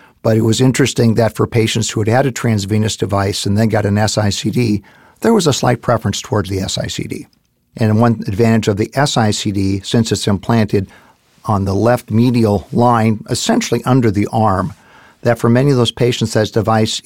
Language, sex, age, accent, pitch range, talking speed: English, male, 50-69, American, 110-125 Hz, 185 wpm